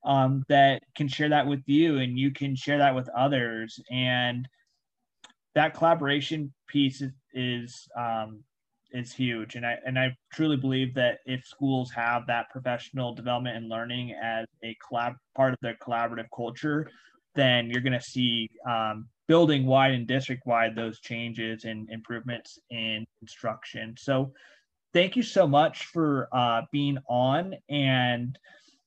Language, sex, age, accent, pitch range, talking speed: English, male, 20-39, American, 120-150 Hz, 150 wpm